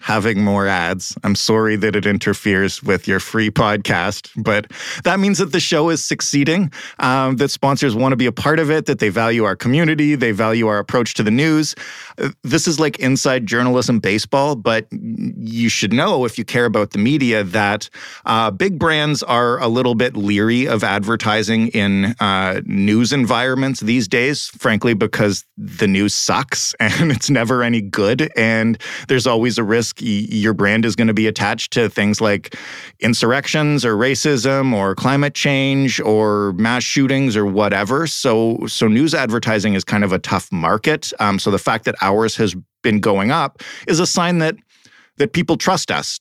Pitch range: 105-140 Hz